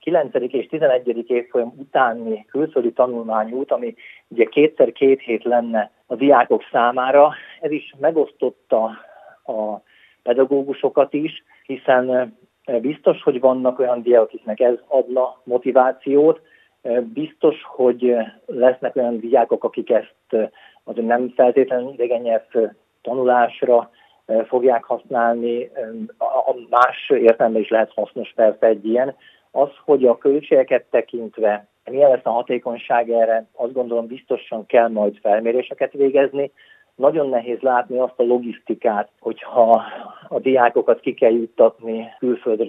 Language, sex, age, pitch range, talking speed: Hungarian, male, 40-59, 115-130 Hz, 120 wpm